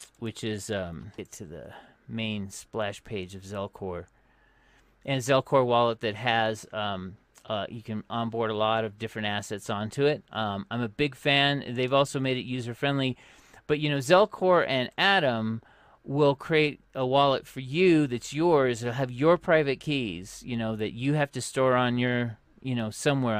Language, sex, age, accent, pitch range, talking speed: English, male, 40-59, American, 105-130 Hz, 175 wpm